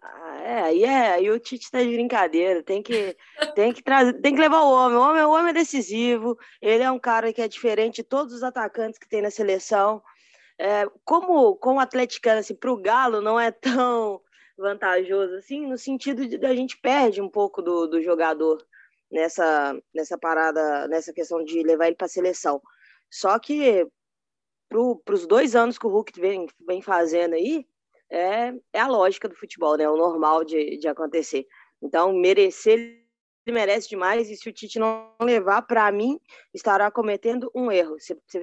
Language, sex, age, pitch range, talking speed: Portuguese, female, 20-39, 180-250 Hz, 185 wpm